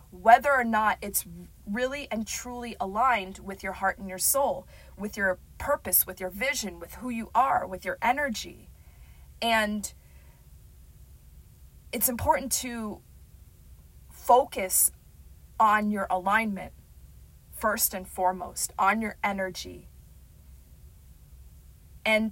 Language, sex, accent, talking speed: English, female, American, 115 wpm